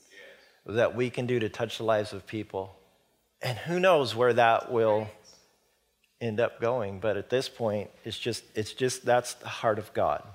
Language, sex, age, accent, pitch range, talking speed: English, male, 40-59, American, 110-135 Hz, 185 wpm